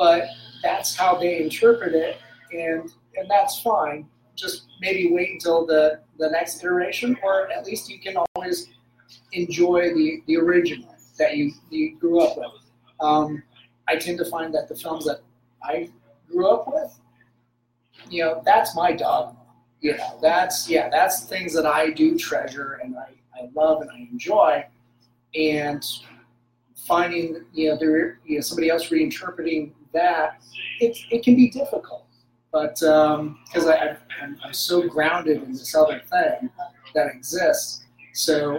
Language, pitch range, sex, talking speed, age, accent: English, 130-180 Hz, male, 155 wpm, 30-49, American